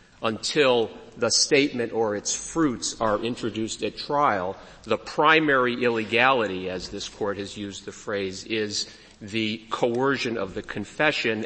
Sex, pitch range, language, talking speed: male, 110-130 Hz, English, 135 wpm